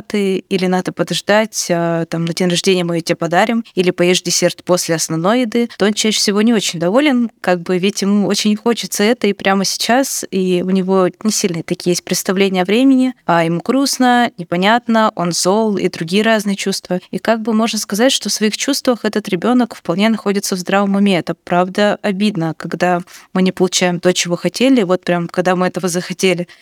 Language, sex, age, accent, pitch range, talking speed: Russian, female, 20-39, native, 180-210 Hz, 195 wpm